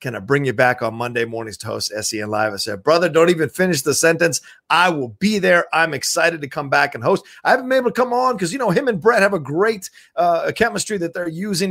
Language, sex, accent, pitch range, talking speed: English, male, American, 145-195 Hz, 270 wpm